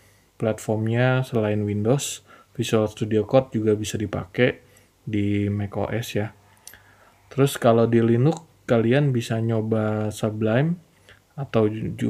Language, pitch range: Indonesian, 105-125 Hz